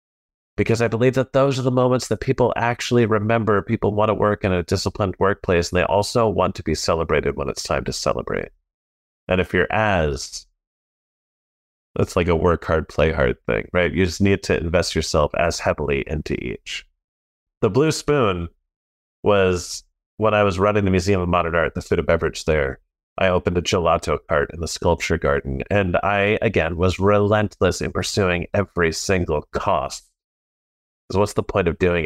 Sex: male